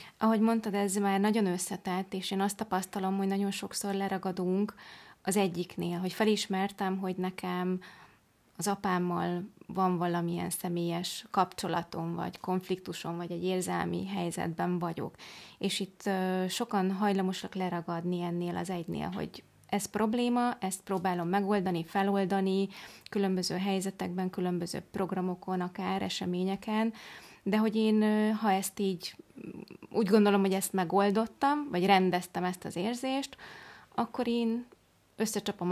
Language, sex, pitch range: Hungarian, female, 185-215 Hz